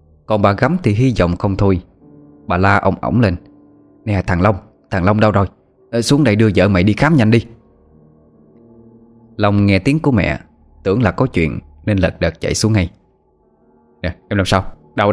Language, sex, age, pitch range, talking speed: Vietnamese, male, 20-39, 85-110 Hz, 195 wpm